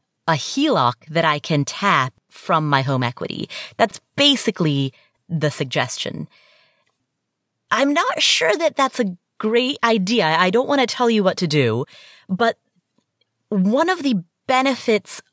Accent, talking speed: American, 140 wpm